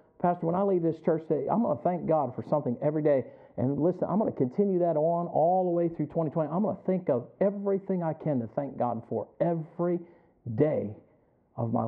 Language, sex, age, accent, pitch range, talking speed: English, male, 50-69, American, 130-160 Hz, 225 wpm